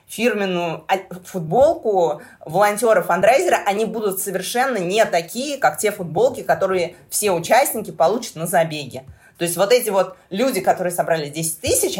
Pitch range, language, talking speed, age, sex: 165-210 Hz, Russian, 140 wpm, 20-39, female